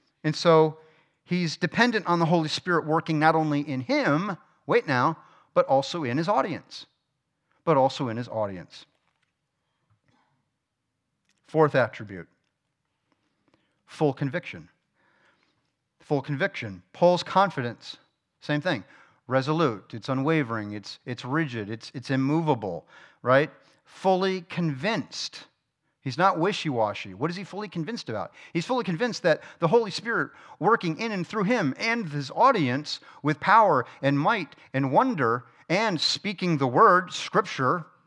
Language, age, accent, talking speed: English, 40-59, American, 130 wpm